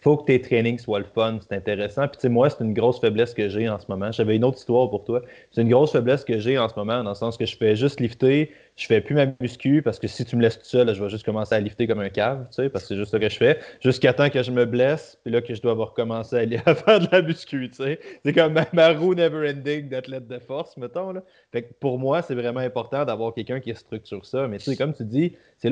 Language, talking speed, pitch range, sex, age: French, 305 wpm, 115-140 Hz, male, 20-39